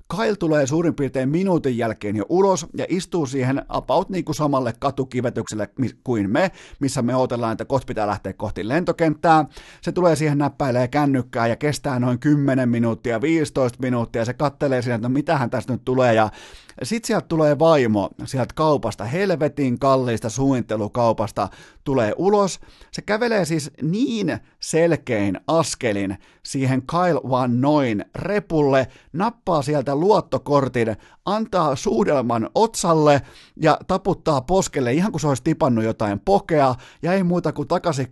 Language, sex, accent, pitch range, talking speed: Finnish, male, native, 120-165 Hz, 145 wpm